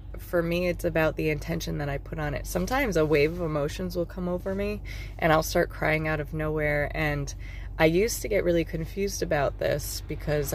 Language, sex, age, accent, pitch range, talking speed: English, female, 20-39, American, 100-160 Hz, 210 wpm